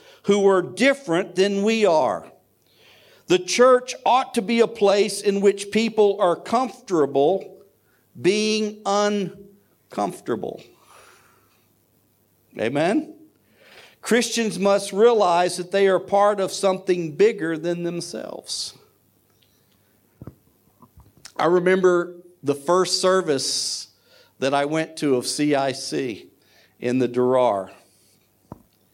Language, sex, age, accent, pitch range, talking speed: English, male, 50-69, American, 115-180 Hz, 95 wpm